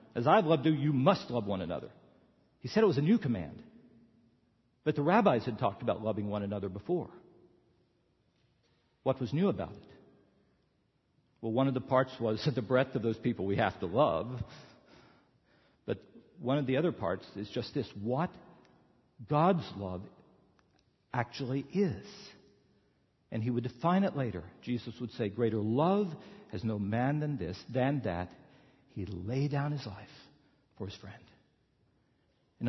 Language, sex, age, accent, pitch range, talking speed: English, male, 50-69, American, 115-165 Hz, 160 wpm